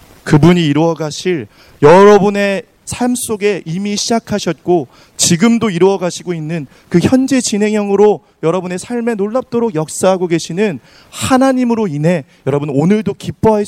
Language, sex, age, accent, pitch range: Korean, male, 30-49, native, 130-185 Hz